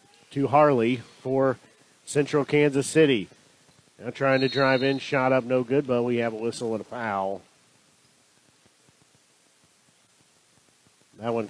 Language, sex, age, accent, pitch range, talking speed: English, male, 50-69, American, 125-150 Hz, 130 wpm